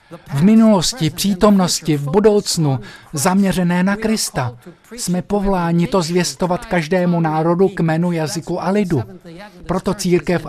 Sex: male